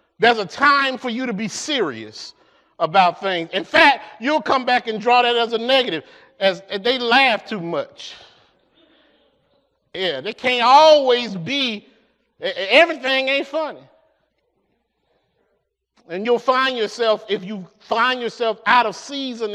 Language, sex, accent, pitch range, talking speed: English, male, American, 180-245 Hz, 140 wpm